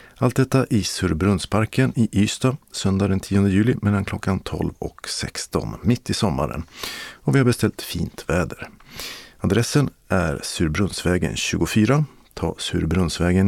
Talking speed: 135 wpm